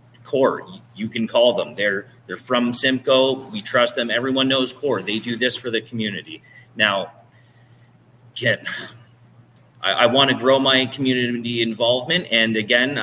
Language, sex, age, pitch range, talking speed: English, male, 30-49, 105-125 Hz, 150 wpm